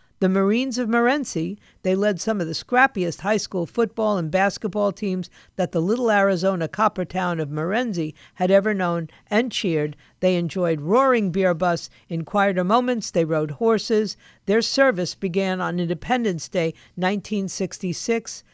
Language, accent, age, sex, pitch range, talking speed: English, American, 50-69, female, 170-215 Hz, 150 wpm